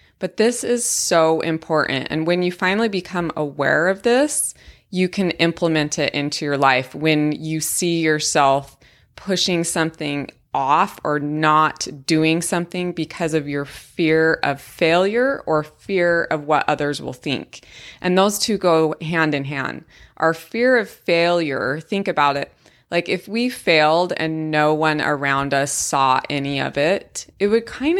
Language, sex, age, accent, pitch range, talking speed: English, female, 20-39, American, 150-190 Hz, 160 wpm